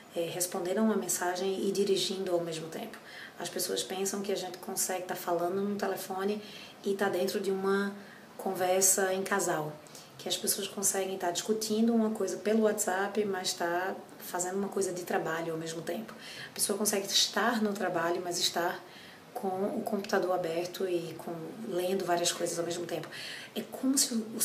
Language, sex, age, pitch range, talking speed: Portuguese, female, 20-39, 180-220 Hz, 190 wpm